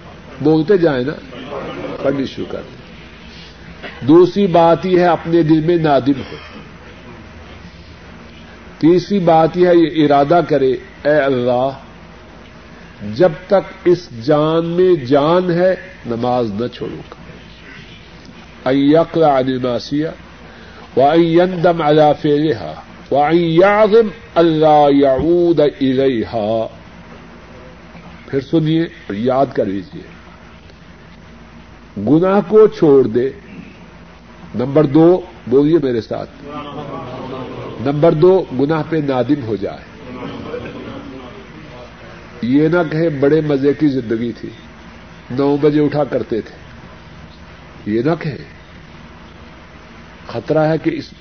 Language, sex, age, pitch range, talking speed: Urdu, male, 50-69, 125-170 Hz, 95 wpm